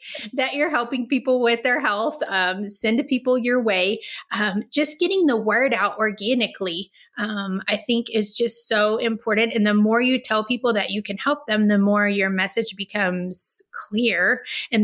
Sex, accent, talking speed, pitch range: female, American, 180 wpm, 200-235 Hz